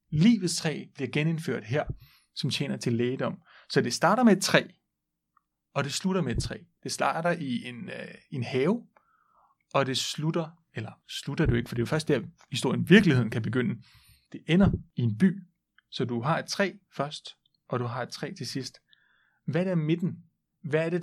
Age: 30-49